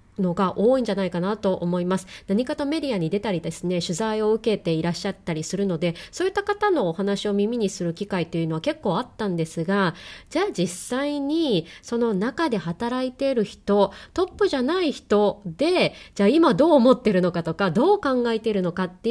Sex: female